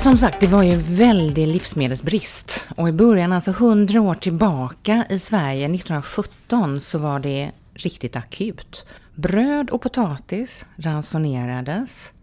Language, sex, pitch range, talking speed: Swedish, female, 150-210 Hz, 135 wpm